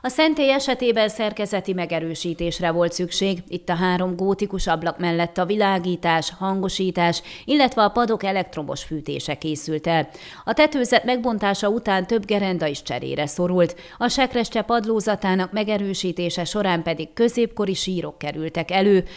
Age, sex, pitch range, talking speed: 30-49, female, 170-210 Hz, 130 wpm